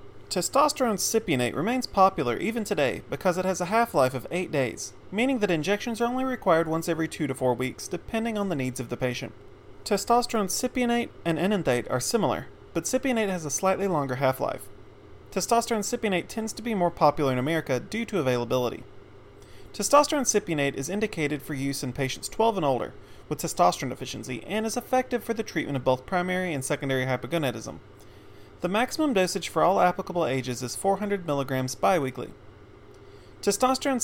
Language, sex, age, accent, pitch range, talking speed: English, male, 30-49, American, 130-205 Hz, 165 wpm